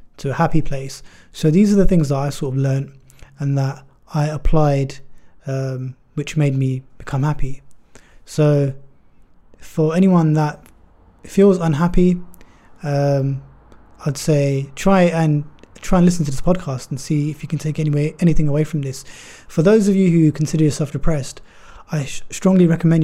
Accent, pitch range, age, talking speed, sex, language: British, 140-165 Hz, 20-39, 165 wpm, male, English